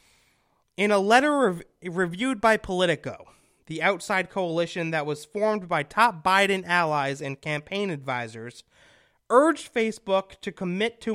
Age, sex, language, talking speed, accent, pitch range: 30-49, male, English, 135 wpm, American, 145-200 Hz